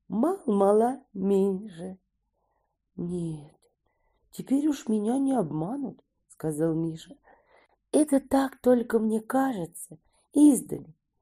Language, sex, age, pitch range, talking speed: Russian, female, 40-59, 175-255 Hz, 85 wpm